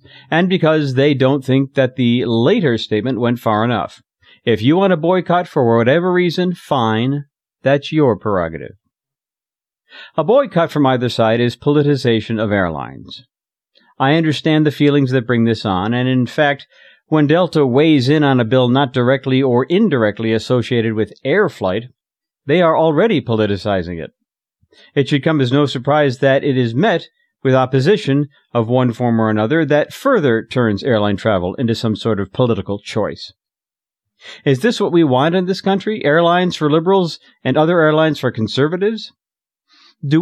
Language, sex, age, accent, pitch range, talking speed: English, male, 50-69, American, 120-160 Hz, 165 wpm